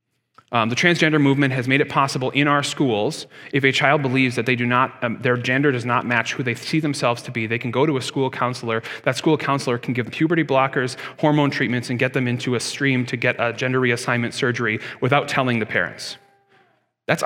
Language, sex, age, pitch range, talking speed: English, male, 30-49, 125-150 Hz, 225 wpm